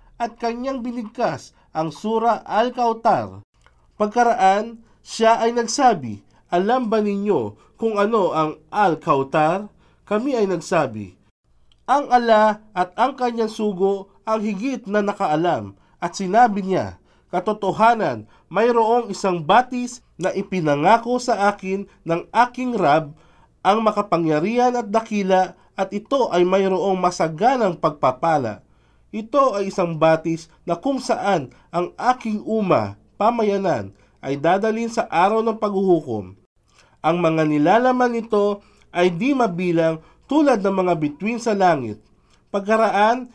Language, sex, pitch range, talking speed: Filipino, male, 165-225 Hz, 120 wpm